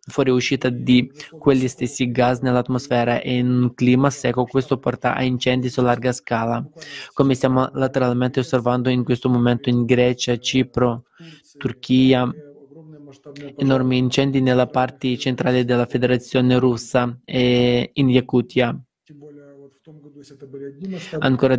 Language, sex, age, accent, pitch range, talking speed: Italian, male, 20-39, native, 125-135 Hz, 115 wpm